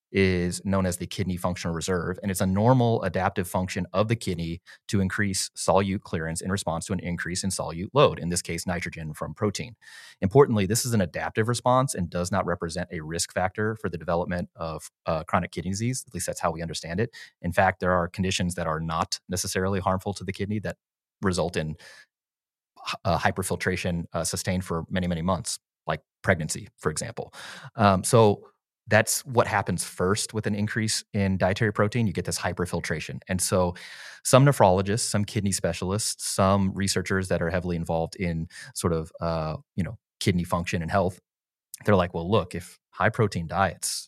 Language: English